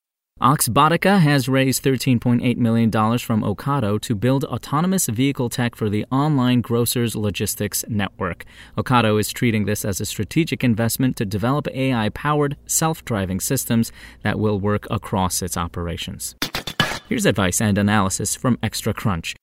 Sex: male